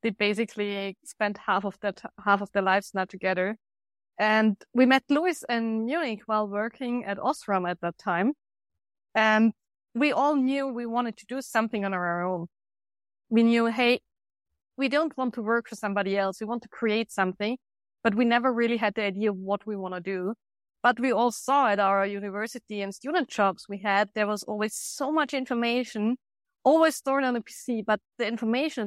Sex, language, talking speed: female, English, 190 wpm